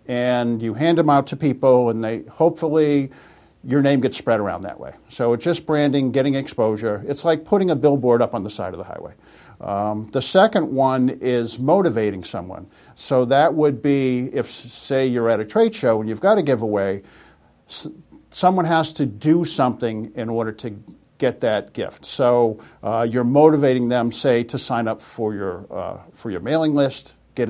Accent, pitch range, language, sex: American, 115-140 Hz, English, male